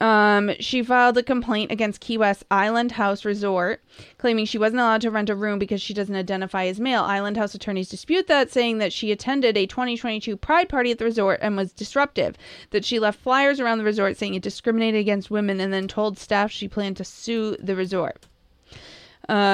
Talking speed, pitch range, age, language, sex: 205 wpm, 190-230 Hz, 20-39, English, female